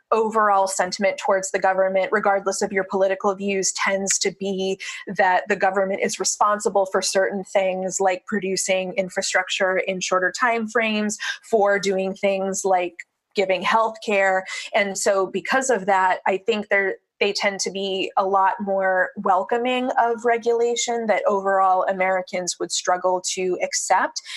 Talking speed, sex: 150 wpm, female